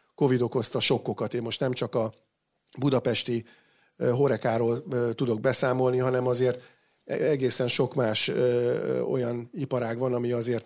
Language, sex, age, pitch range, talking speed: Hungarian, male, 50-69, 120-130 Hz, 125 wpm